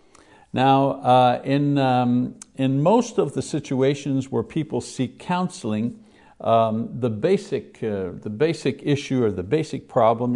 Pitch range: 110-140 Hz